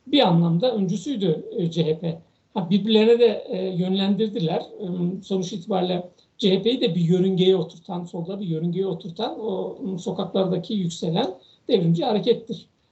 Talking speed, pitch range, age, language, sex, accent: 105 wpm, 175-215 Hz, 60-79, Turkish, male, native